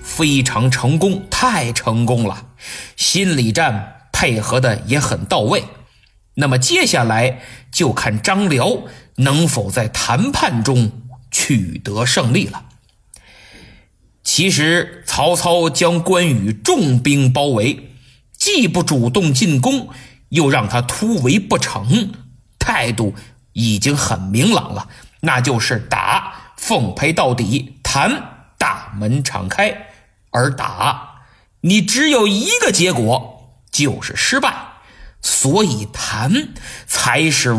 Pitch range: 120-170 Hz